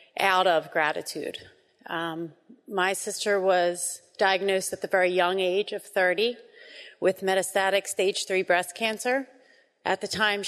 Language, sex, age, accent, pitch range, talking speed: English, female, 30-49, American, 190-225 Hz, 135 wpm